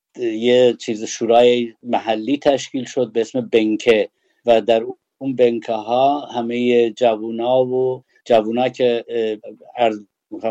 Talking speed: 125 wpm